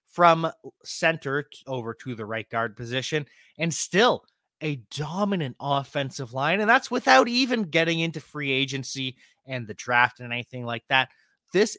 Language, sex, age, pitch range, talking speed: English, male, 30-49, 125-175 Hz, 155 wpm